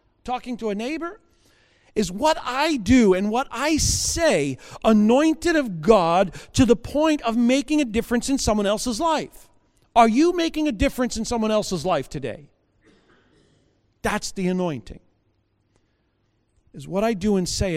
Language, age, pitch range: English, 50-69, 140-225 Hz